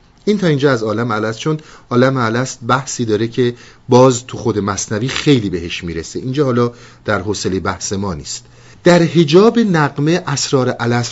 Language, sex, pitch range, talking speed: Persian, male, 95-130 Hz, 165 wpm